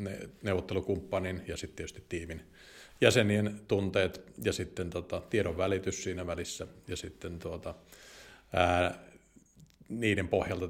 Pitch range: 90-100 Hz